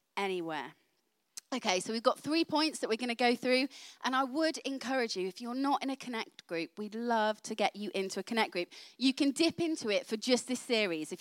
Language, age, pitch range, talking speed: English, 30-49, 205-260 Hz, 235 wpm